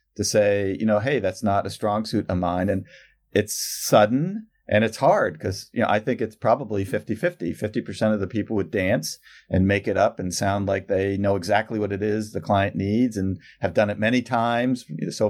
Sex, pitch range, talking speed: male, 100-110 Hz, 220 wpm